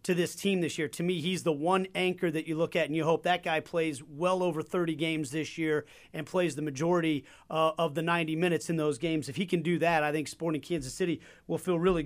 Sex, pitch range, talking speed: male, 160-185 Hz, 260 wpm